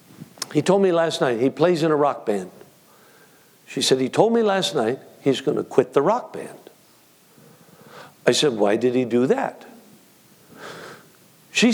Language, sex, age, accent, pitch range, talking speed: English, male, 60-79, American, 145-190 Hz, 170 wpm